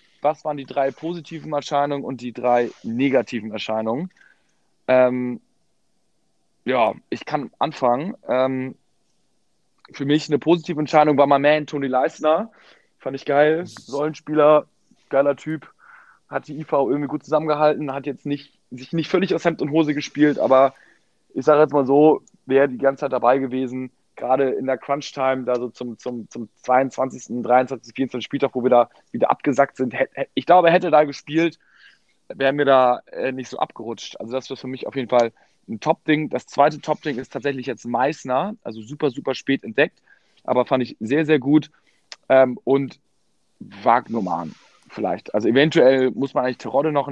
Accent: German